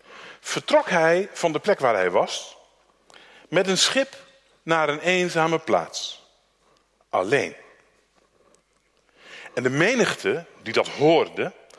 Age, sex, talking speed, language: 50-69, male, 110 wpm, Dutch